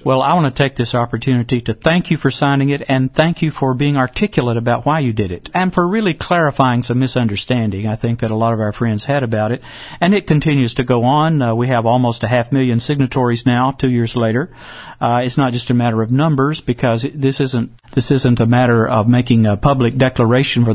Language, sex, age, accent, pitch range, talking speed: English, male, 50-69, American, 120-140 Hz, 230 wpm